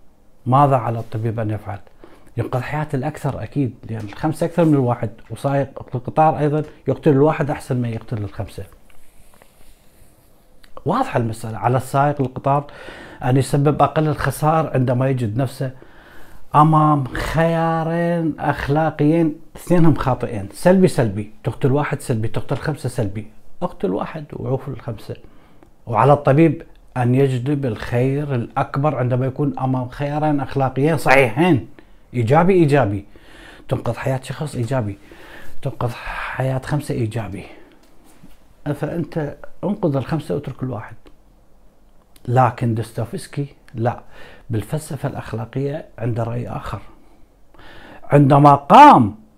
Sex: male